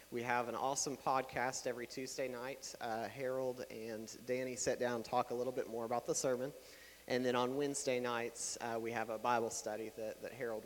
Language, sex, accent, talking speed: English, male, American, 210 wpm